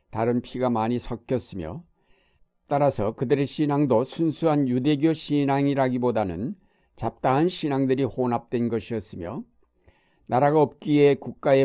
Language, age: Korean, 60-79